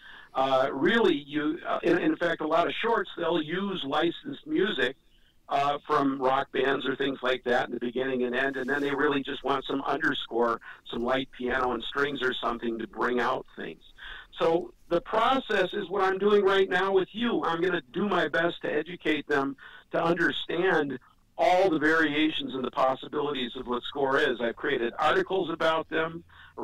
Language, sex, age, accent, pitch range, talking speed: English, male, 50-69, American, 130-175 Hz, 190 wpm